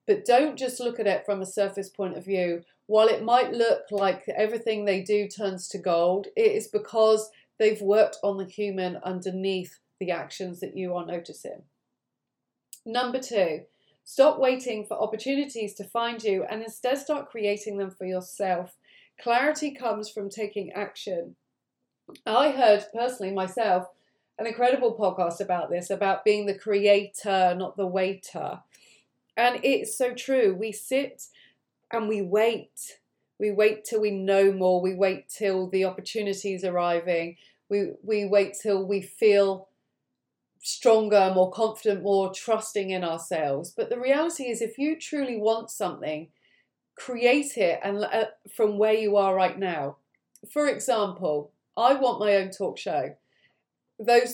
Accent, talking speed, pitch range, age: British, 150 wpm, 190-230 Hz, 30-49